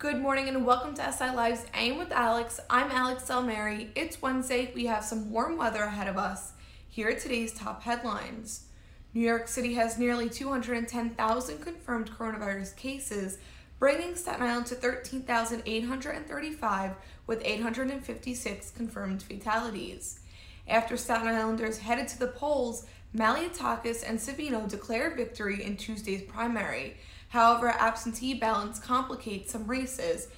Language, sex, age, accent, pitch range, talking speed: English, female, 20-39, American, 220-255 Hz, 130 wpm